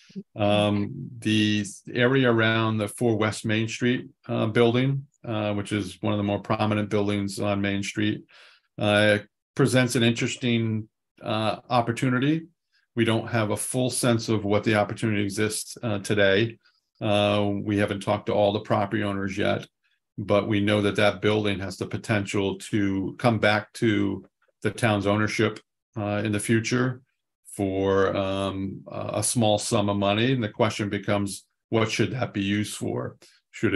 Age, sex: 40-59, male